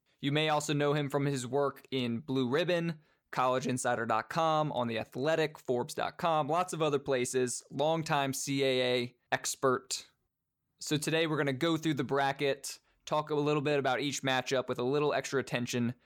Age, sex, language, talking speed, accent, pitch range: 20-39, male, English, 165 wpm, American, 130-155 Hz